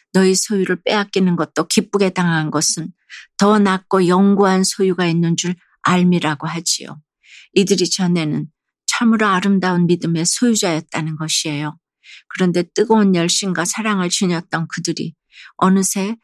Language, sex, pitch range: Korean, female, 165-195 Hz